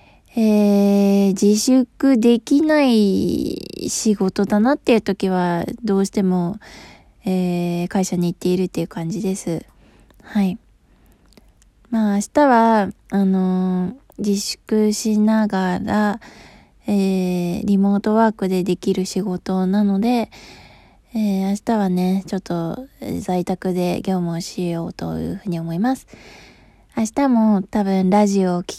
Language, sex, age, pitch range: Japanese, female, 20-39, 180-220 Hz